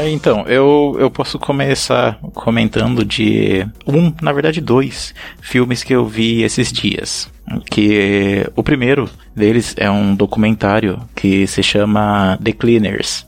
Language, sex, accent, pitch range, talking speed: Portuguese, male, Brazilian, 110-145 Hz, 130 wpm